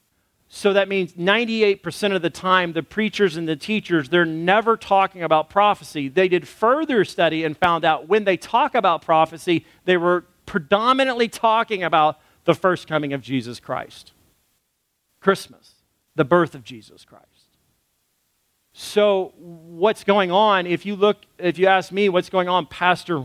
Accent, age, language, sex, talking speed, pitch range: American, 40-59, English, male, 150 wpm, 155-205 Hz